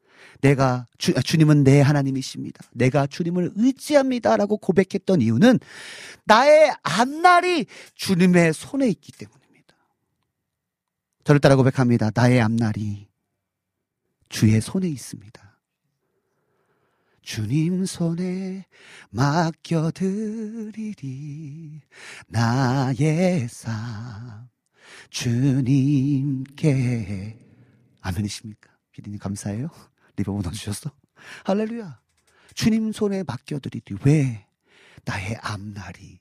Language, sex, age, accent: Korean, male, 40-59, native